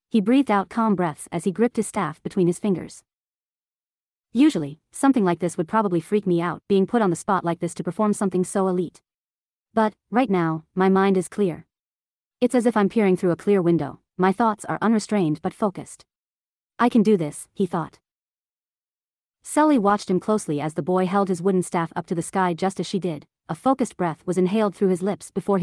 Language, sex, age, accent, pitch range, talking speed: English, female, 40-59, American, 170-210 Hz, 210 wpm